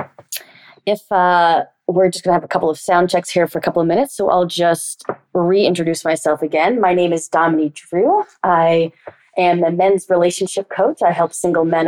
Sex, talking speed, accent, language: female, 190 wpm, American, English